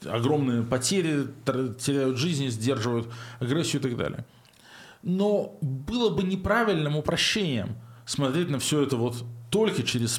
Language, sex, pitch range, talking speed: Russian, male, 120-150 Hz, 125 wpm